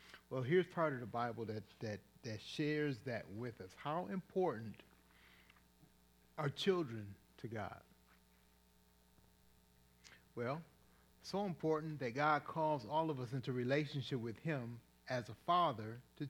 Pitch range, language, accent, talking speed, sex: 105-150 Hz, English, American, 135 wpm, male